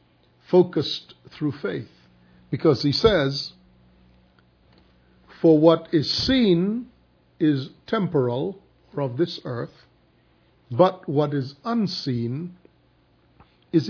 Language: English